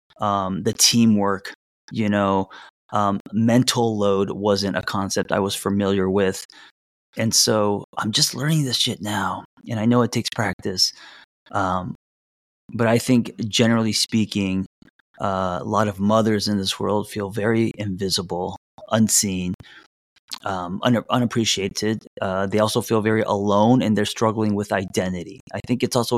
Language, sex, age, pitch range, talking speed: English, male, 30-49, 100-120 Hz, 150 wpm